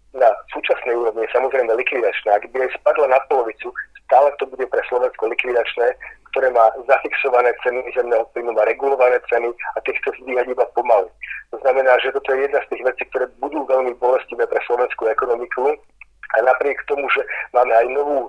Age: 30-49